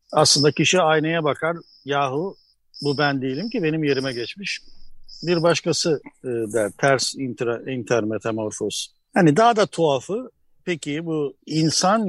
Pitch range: 135-190 Hz